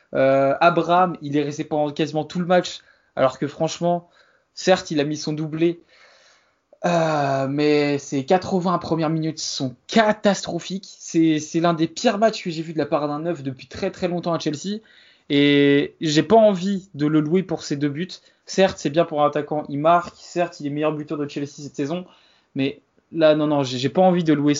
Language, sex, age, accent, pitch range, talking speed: French, male, 20-39, French, 145-175 Hz, 205 wpm